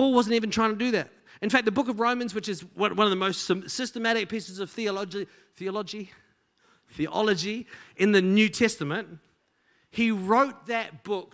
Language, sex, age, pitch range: English, male, 40-59, 185-230 Hz